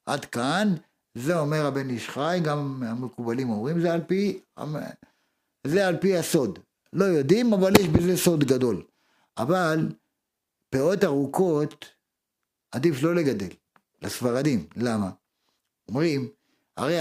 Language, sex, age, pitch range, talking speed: Hebrew, male, 50-69, 135-185 Hz, 115 wpm